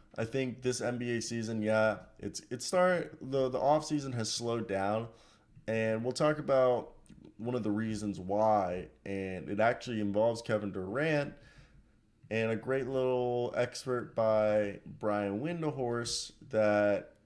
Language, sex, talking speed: English, male, 135 wpm